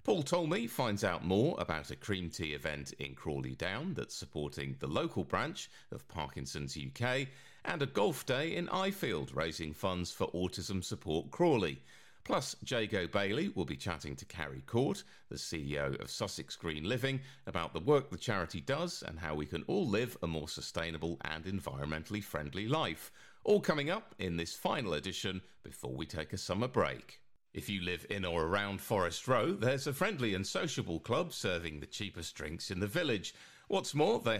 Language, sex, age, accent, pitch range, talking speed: English, male, 40-59, British, 80-115 Hz, 180 wpm